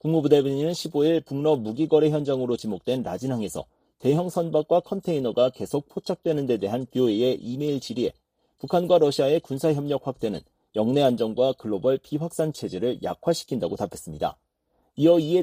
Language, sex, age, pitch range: Korean, male, 40-59, 125-165 Hz